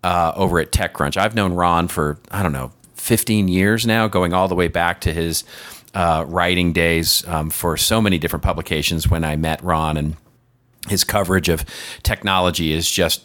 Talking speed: 185 wpm